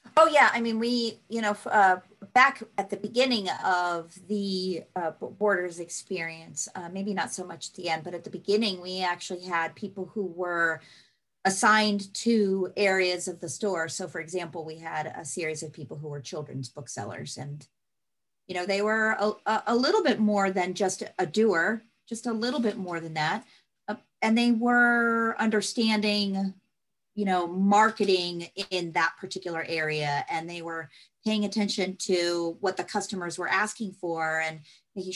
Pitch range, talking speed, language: 170-215 Hz, 170 wpm, English